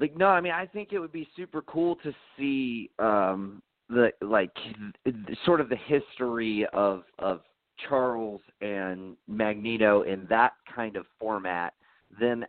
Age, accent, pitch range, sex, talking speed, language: 30-49, American, 95-120 Hz, male, 155 wpm, English